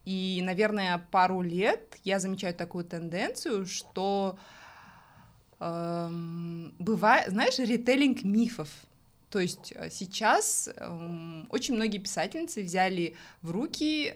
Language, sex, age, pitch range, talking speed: Russian, female, 20-39, 170-220 Hz, 100 wpm